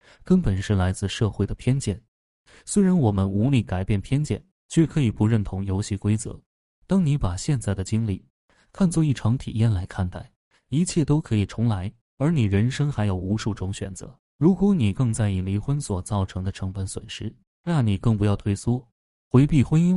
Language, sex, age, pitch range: Chinese, male, 20-39, 100-125 Hz